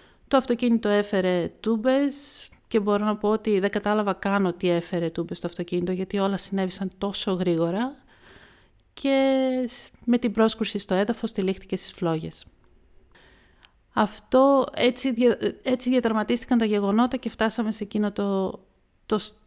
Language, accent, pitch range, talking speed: Greek, native, 190-235 Hz, 135 wpm